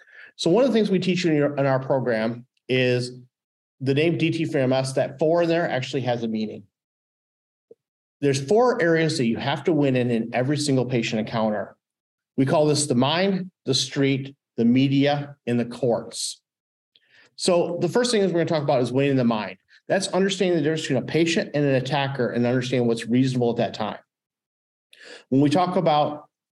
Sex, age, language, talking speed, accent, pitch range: male, 40-59, English, 200 wpm, American, 125-160 Hz